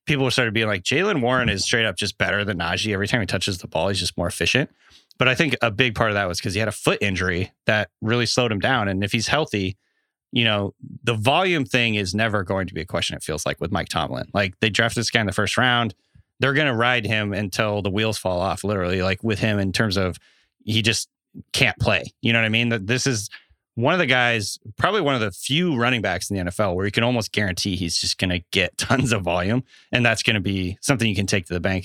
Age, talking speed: 30-49, 265 wpm